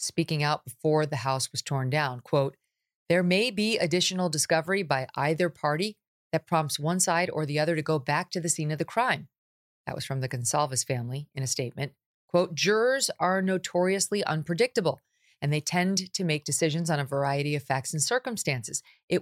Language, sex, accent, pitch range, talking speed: English, female, American, 140-180 Hz, 190 wpm